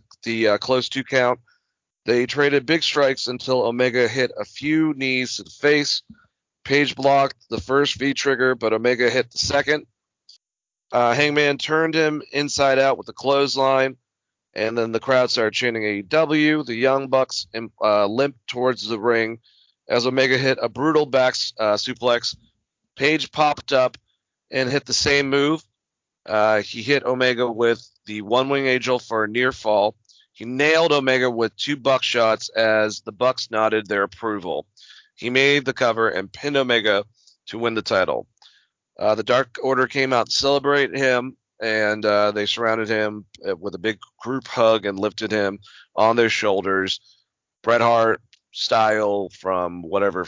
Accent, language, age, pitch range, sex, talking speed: American, English, 40-59, 110-135 Hz, male, 165 wpm